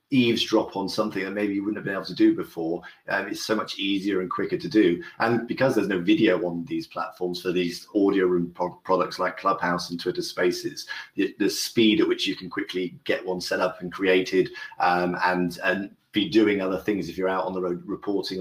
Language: English